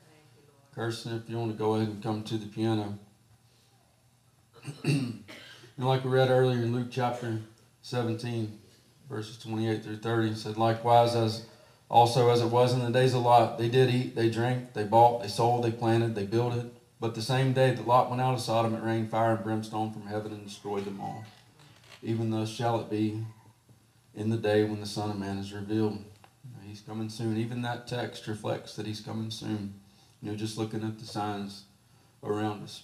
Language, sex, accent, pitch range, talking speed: English, male, American, 110-120 Hz, 205 wpm